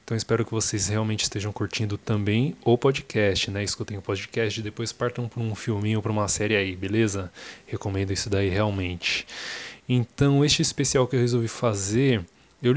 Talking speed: 180 wpm